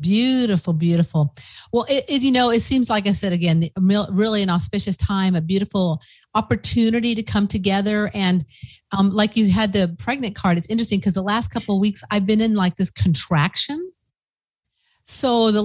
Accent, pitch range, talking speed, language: American, 175-215 Hz, 175 wpm, English